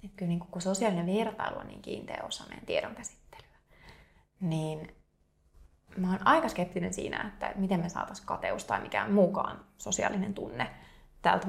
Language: Finnish